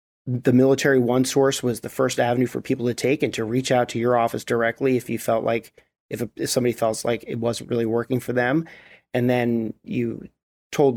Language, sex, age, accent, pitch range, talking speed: English, male, 30-49, American, 120-135 Hz, 215 wpm